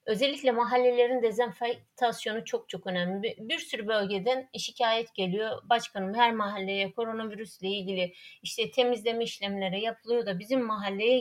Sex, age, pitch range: female, 30-49, 190-250 Hz